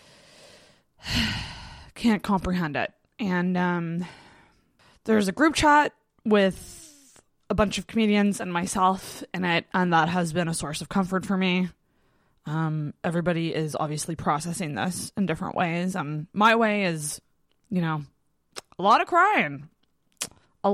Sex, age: female, 20-39